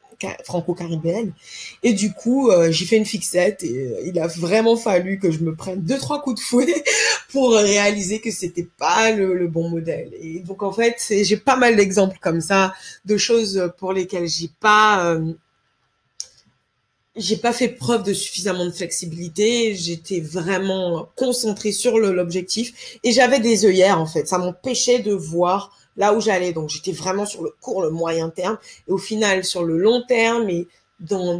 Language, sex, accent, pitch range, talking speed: English, female, French, 170-220 Hz, 185 wpm